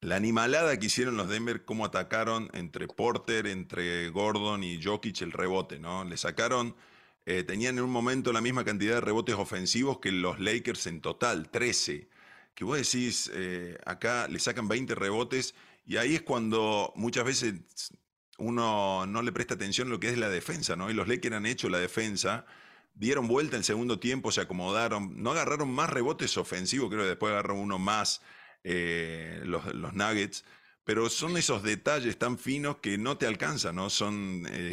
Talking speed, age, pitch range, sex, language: 180 wpm, 30-49, 95-120 Hz, male, Spanish